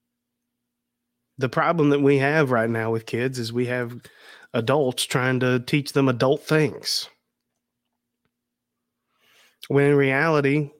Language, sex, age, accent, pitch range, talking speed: English, male, 30-49, American, 110-130 Hz, 120 wpm